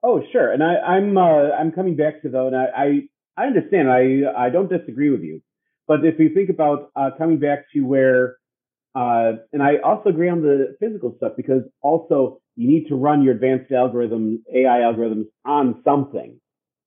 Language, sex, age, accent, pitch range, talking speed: English, male, 40-59, American, 125-150 Hz, 190 wpm